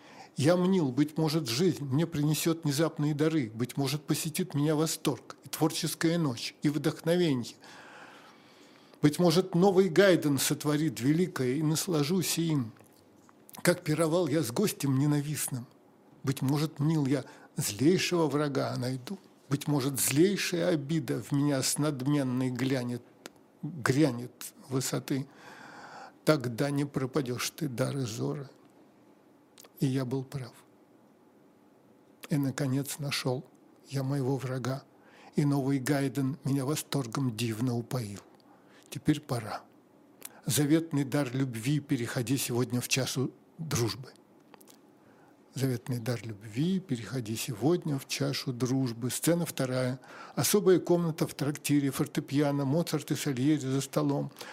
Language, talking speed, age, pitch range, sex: Russian, 115 wpm, 50-69, 130-160 Hz, male